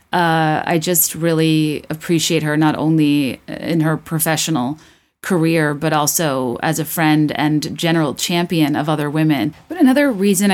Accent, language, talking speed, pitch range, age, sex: American, English, 150 wpm, 155-180 Hz, 30-49, female